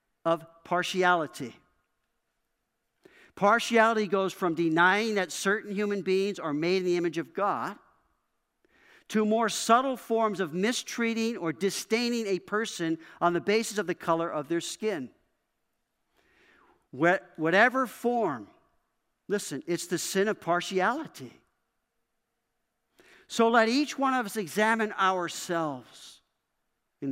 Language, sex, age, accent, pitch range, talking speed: English, male, 50-69, American, 180-230 Hz, 115 wpm